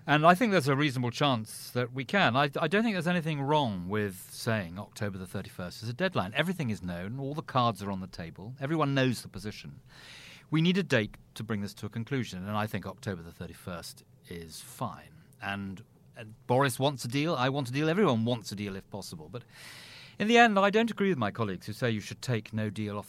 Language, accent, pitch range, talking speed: English, British, 105-140 Hz, 235 wpm